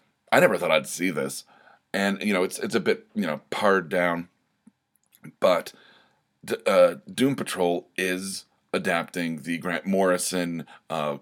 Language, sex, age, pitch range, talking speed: English, male, 30-49, 85-95 Hz, 150 wpm